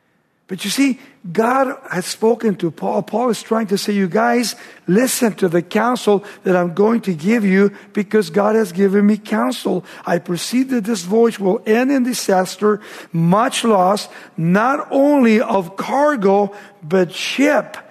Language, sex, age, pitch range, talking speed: English, male, 60-79, 185-235 Hz, 160 wpm